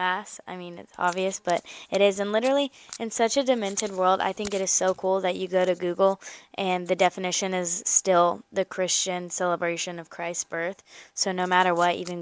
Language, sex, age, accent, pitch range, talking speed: English, female, 10-29, American, 175-195 Hz, 200 wpm